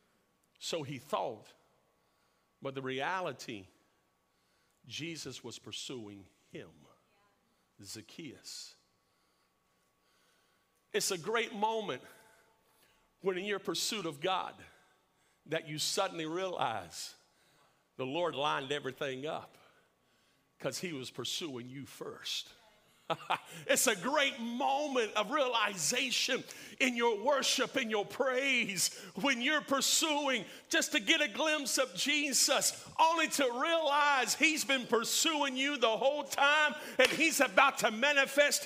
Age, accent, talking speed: 50-69, American, 115 wpm